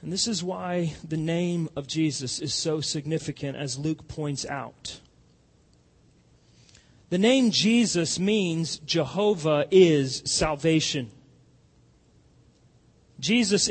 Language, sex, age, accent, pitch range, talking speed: English, male, 40-59, American, 155-225 Hz, 100 wpm